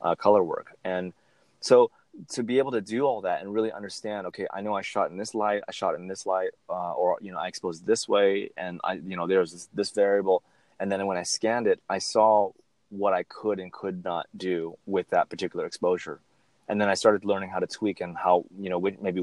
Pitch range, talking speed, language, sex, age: 90-105 Hz, 245 wpm, English, male, 30-49